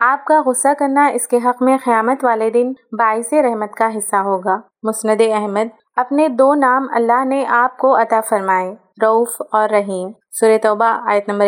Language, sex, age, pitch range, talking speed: Urdu, female, 30-49, 220-255 Hz, 180 wpm